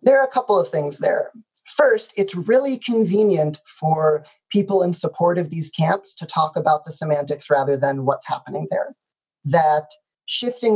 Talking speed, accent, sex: 165 wpm, American, male